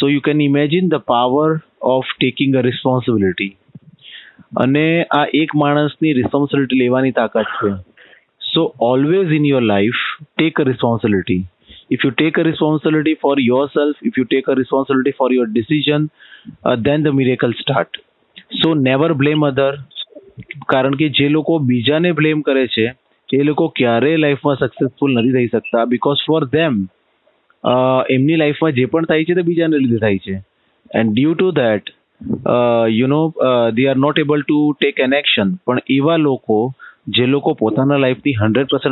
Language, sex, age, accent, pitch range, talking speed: English, male, 30-49, Indian, 125-150 Hz, 130 wpm